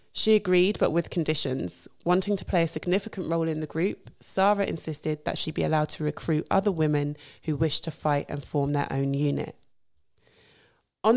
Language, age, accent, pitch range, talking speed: English, 20-39, British, 150-175 Hz, 185 wpm